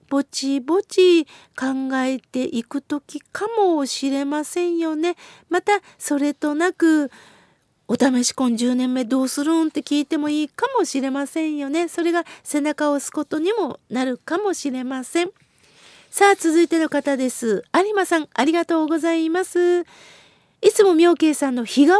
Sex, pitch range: female, 220-330 Hz